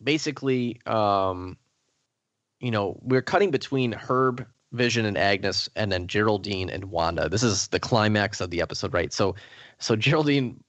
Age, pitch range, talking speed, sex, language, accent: 30-49, 105-125 Hz, 150 wpm, male, English, American